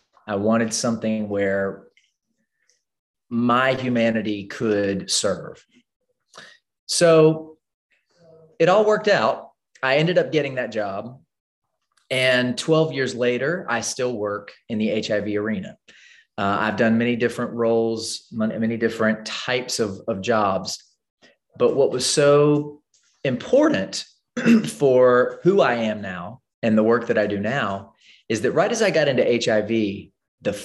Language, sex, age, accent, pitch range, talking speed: English, male, 30-49, American, 110-145 Hz, 135 wpm